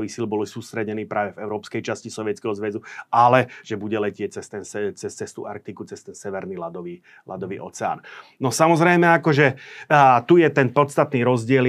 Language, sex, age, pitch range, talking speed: Slovak, male, 30-49, 110-125 Hz, 170 wpm